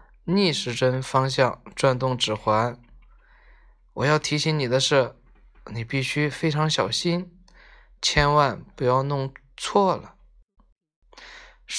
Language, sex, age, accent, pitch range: Chinese, male, 20-39, native, 130-180 Hz